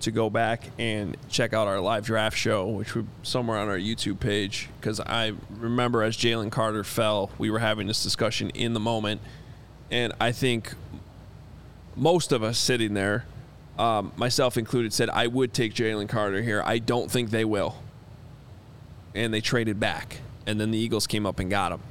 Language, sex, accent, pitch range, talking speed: English, male, American, 110-125 Hz, 185 wpm